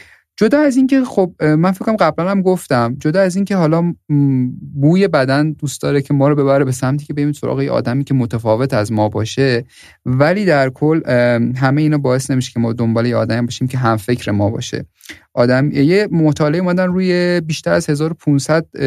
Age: 30-49